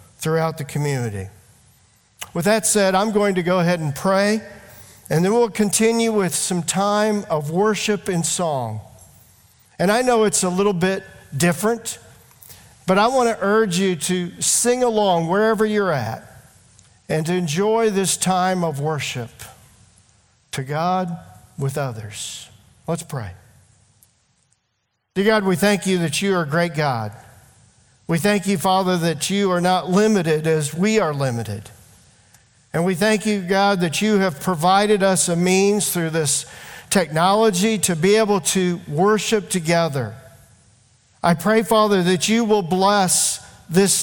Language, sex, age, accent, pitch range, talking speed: English, male, 50-69, American, 130-200 Hz, 150 wpm